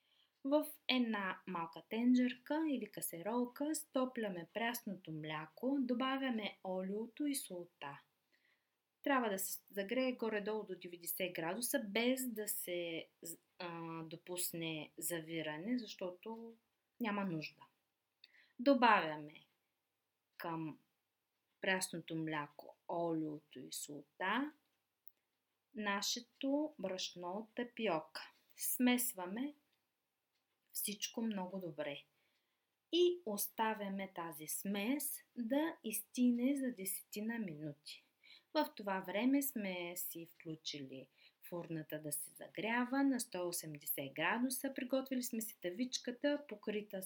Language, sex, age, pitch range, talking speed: Bulgarian, female, 20-39, 170-255 Hz, 90 wpm